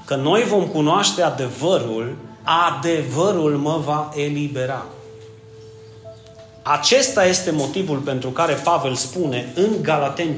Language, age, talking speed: Romanian, 30-49, 105 wpm